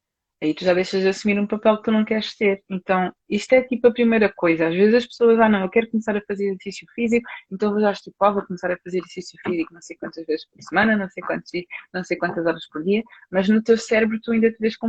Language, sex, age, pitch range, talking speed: Portuguese, female, 20-39, 180-215 Hz, 280 wpm